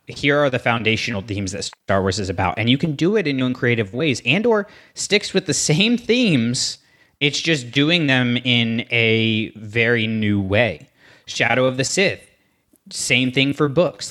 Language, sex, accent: English, male, American